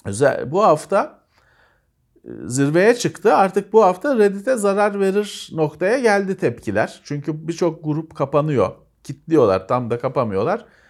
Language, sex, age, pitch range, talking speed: Turkish, male, 40-59, 115-175 Hz, 115 wpm